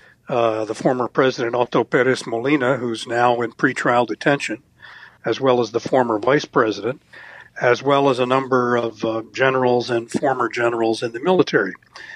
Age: 60-79